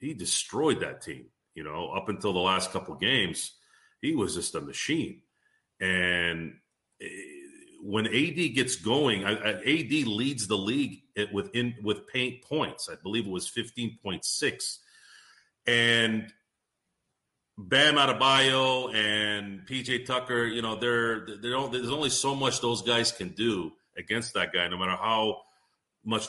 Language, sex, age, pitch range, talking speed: English, male, 40-59, 105-135 Hz, 140 wpm